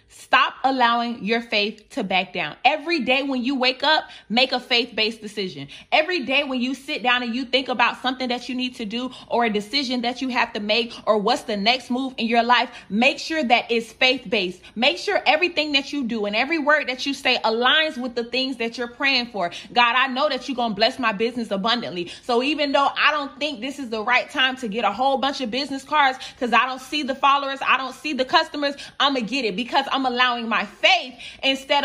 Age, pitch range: 20-39, 235-290 Hz